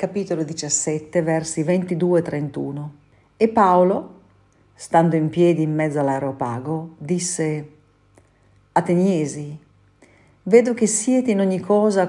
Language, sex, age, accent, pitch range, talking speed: Italian, female, 50-69, native, 150-185 Hz, 110 wpm